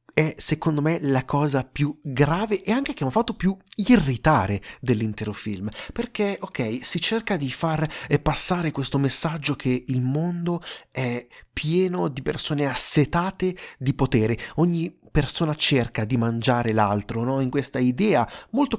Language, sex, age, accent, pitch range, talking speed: Italian, male, 30-49, native, 120-170 Hz, 150 wpm